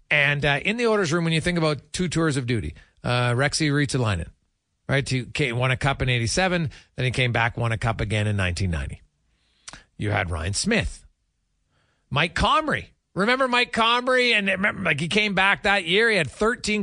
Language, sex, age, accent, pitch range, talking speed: English, male, 40-59, American, 110-180 Hz, 195 wpm